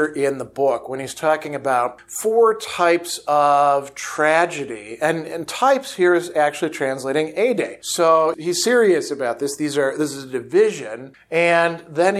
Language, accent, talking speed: English, American, 160 wpm